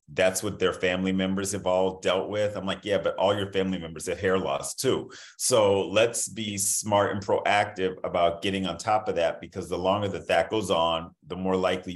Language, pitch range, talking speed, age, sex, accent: English, 85-100 Hz, 215 wpm, 40-59, male, American